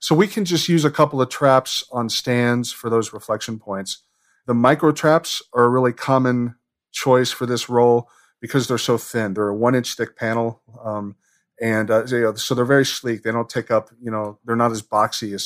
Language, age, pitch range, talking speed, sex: English, 40-59, 115-130 Hz, 210 wpm, male